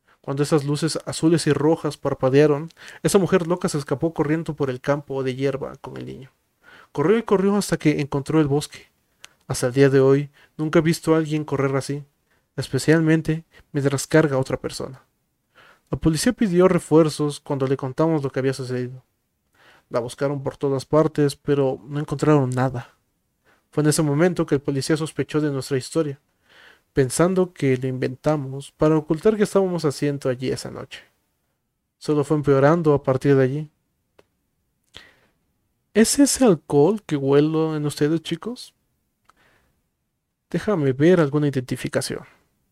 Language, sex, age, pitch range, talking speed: Spanish, male, 30-49, 135-160 Hz, 155 wpm